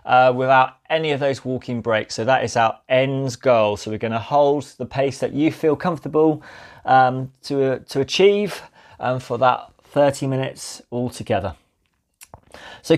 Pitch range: 125-165 Hz